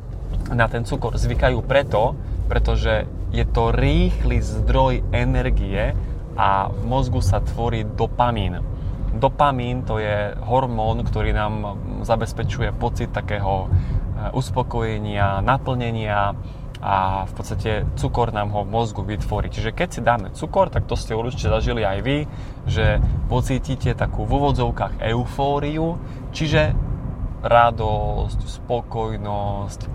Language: Slovak